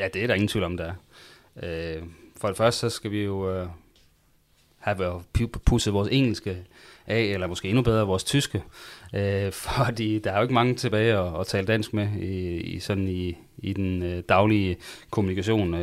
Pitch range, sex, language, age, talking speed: 95-110 Hz, male, Danish, 30-49, 165 wpm